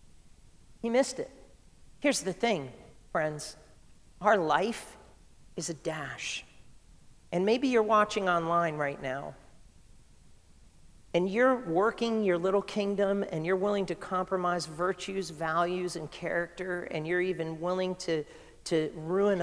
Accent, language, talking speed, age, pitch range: American, English, 125 wpm, 50-69, 165-195 Hz